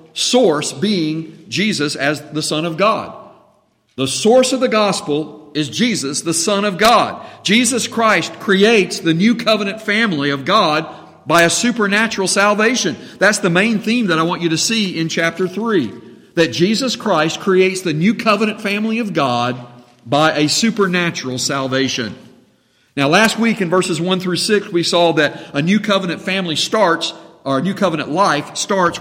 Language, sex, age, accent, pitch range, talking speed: English, male, 50-69, American, 150-210 Hz, 165 wpm